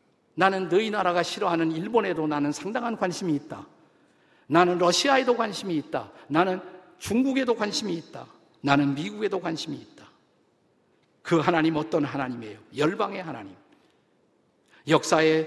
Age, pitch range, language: 50-69, 160-210 Hz, Korean